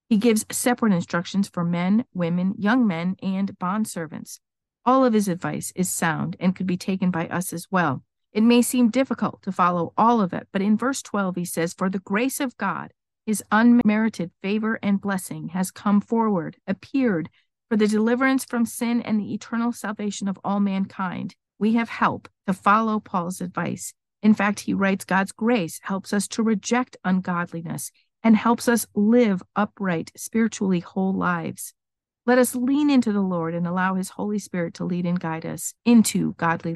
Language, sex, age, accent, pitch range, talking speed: English, female, 50-69, American, 180-225 Hz, 180 wpm